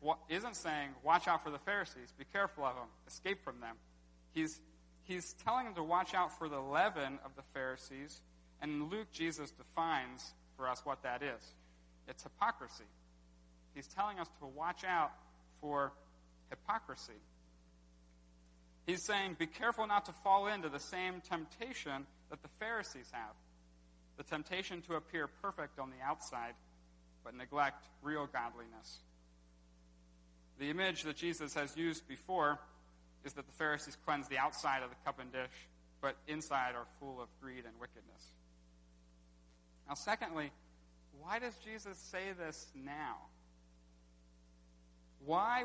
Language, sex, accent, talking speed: English, male, American, 145 wpm